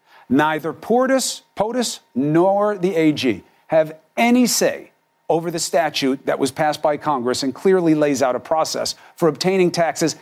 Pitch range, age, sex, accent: 145-190 Hz, 50-69, male, American